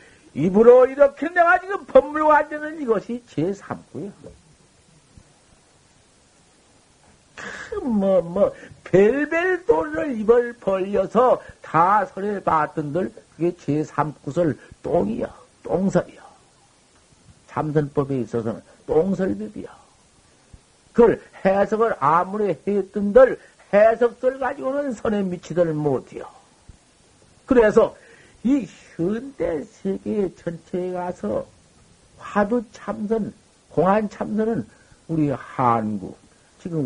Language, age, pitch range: Korean, 50-69, 150-230 Hz